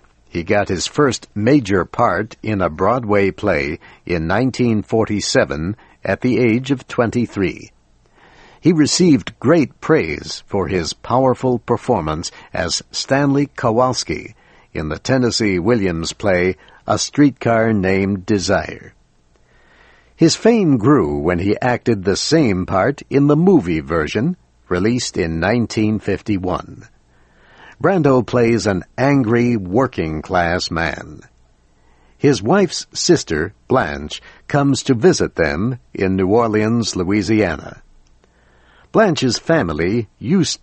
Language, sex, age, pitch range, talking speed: English, male, 60-79, 90-120 Hz, 110 wpm